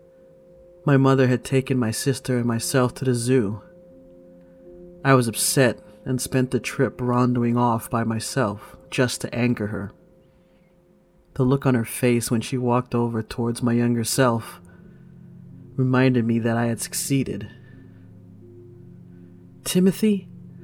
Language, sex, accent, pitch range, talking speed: English, male, American, 110-130 Hz, 135 wpm